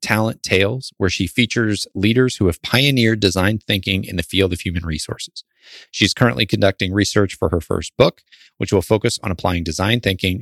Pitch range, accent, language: 95-120 Hz, American, English